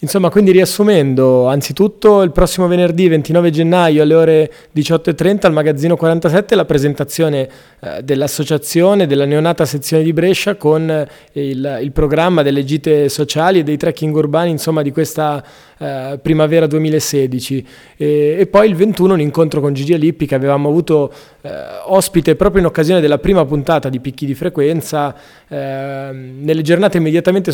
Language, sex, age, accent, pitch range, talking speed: Italian, male, 20-39, native, 140-165 Hz, 155 wpm